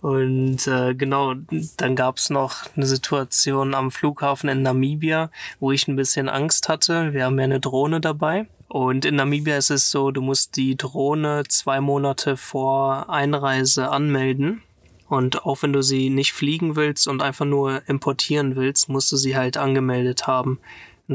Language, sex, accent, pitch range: German, male, German, 130-145 Hz